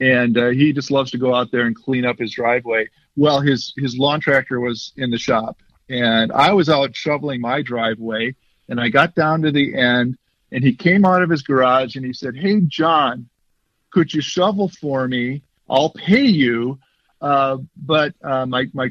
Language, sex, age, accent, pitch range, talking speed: English, male, 50-69, American, 125-155 Hz, 195 wpm